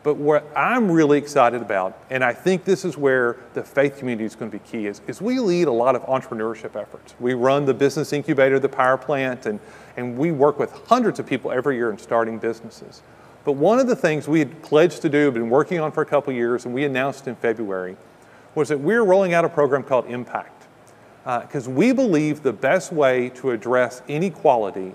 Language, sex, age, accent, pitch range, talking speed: English, male, 40-59, American, 130-170 Hz, 215 wpm